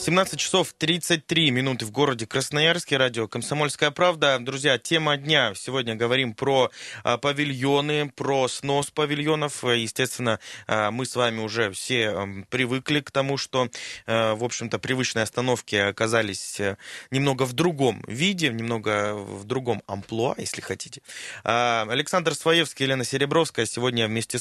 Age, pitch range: 20-39, 115-145 Hz